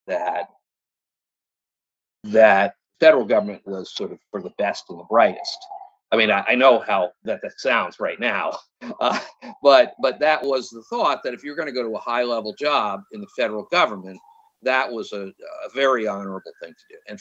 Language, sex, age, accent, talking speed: English, male, 50-69, American, 195 wpm